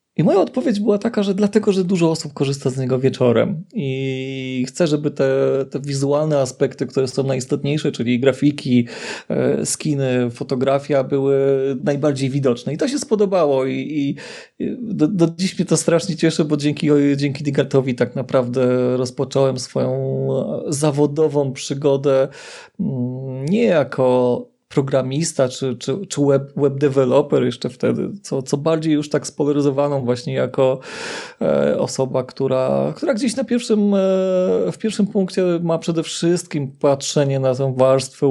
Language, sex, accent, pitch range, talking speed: Polish, male, native, 135-185 Hz, 145 wpm